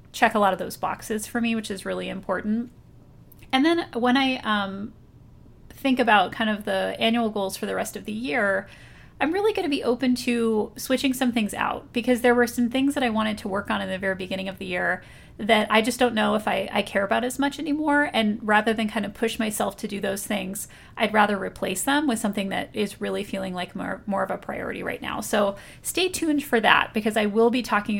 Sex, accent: female, American